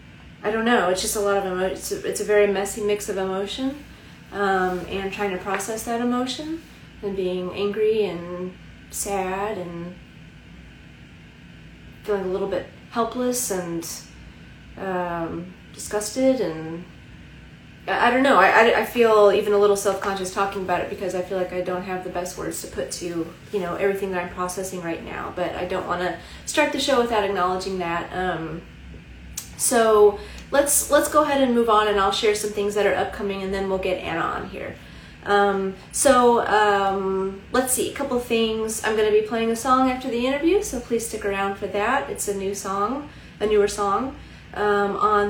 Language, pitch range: English, 190-230 Hz